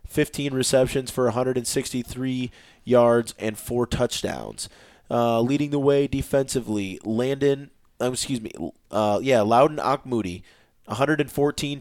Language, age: English, 20-39